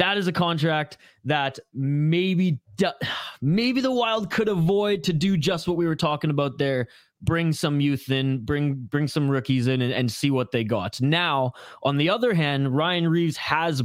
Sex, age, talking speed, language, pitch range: male, 20-39, 185 wpm, English, 135-170 Hz